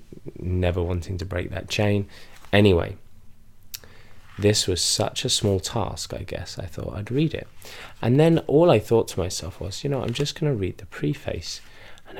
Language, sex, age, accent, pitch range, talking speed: English, male, 20-39, British, 95-110 Hz, 180 wpm